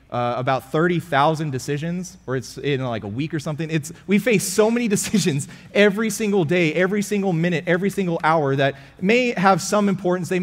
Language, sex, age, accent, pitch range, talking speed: English, male, 30-49, American, 145-185 Hz, 190 wpm